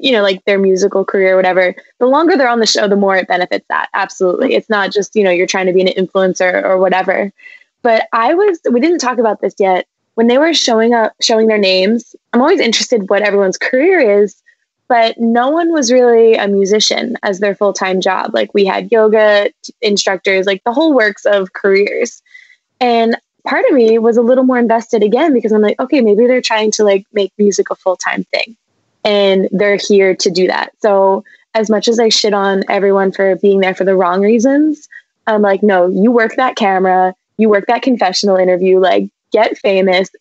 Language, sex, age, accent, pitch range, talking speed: English, female, 20-39, American, 190-230 Hz, 210 wpm